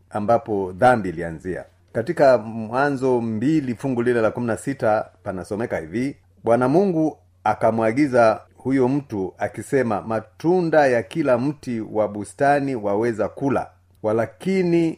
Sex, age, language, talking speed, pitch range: male, 40-59, Swahili, 105 wpm, 105-140 Hz